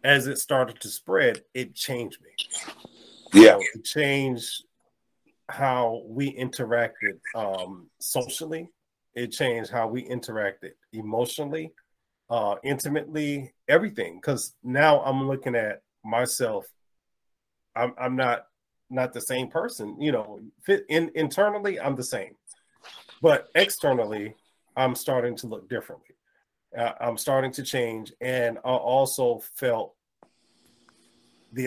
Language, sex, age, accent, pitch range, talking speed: English, male, 30-49, American, 120-140 Hz, 120 wpm